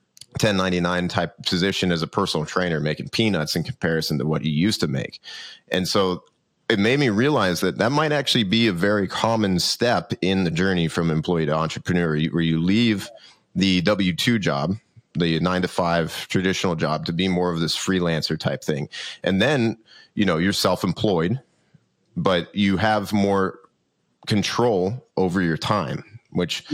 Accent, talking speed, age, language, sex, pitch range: American, 160 wpm, 30-49, English, male, 80-100 Hz